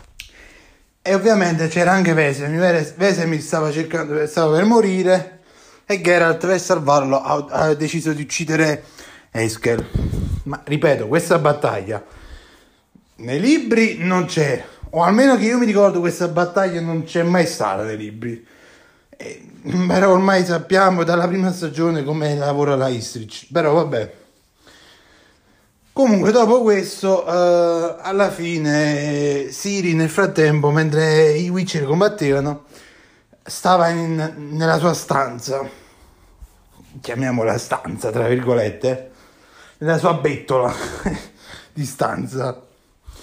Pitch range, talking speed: 140-180 Hz, 115 wpm